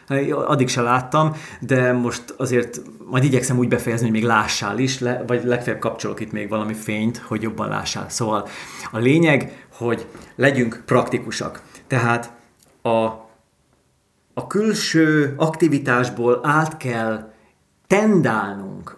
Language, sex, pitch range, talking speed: Hungarian, male, 120-150 Hz, 120 wpm